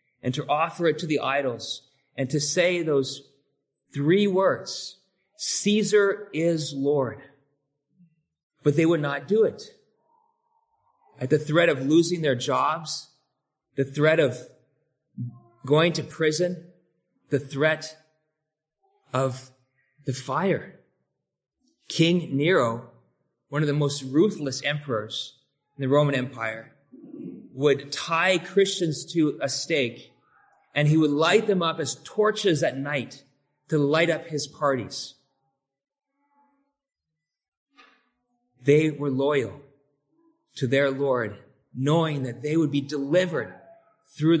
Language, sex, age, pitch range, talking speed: English, male, 30-49, 135-170 Hz, 115 wpm